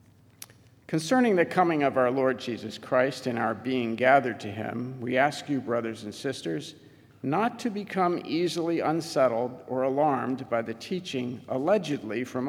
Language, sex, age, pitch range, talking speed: English, male, 50-69, 115-150 Hz, 155 wpm